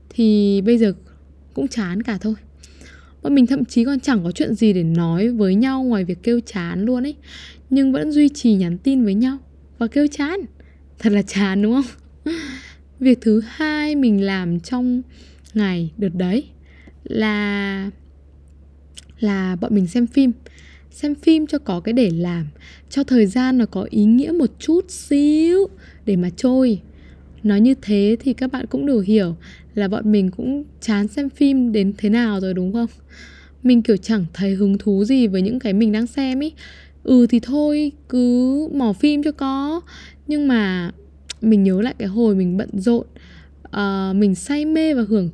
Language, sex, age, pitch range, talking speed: Vietnamese, female, 10-29, 195-260 Hz, 180 wpm